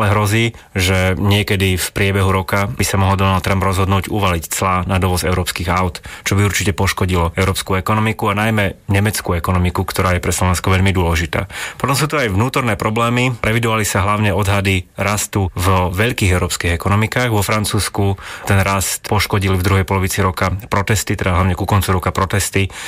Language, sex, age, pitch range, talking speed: Slovak, male, 30-49, 95-105 Hz, 170 wpm